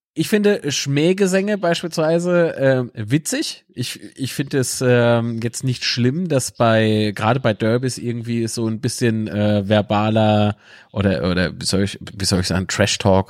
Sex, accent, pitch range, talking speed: male, German, 110-145 Hz, 160 wpm